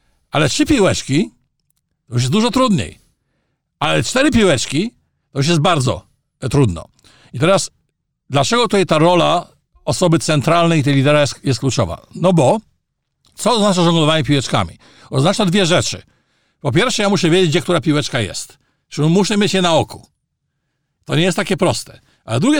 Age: 50-69